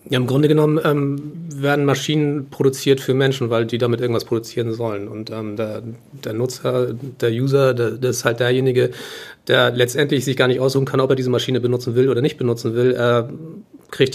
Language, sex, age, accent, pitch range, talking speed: German, male, 40-59, German, 120-135 Hz, 195 wpm